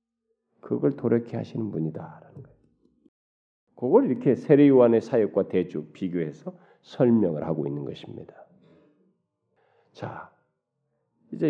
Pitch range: 110-185 Hz